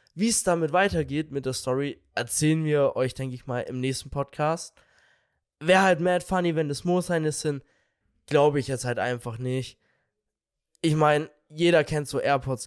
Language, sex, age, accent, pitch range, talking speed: German, male, 20-39, German, 130-180 Hz, 175 wpm